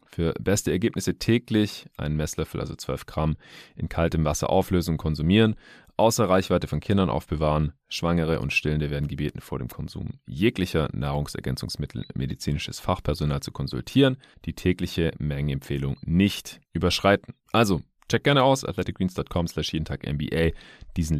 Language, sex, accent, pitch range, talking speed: German, male, German, 80-110 Hz, 135 wpm